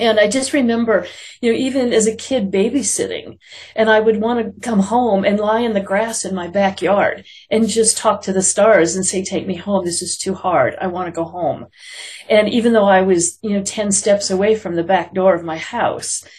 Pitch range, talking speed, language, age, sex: 190-235 Hz, 230 wpm, English, 40-59, female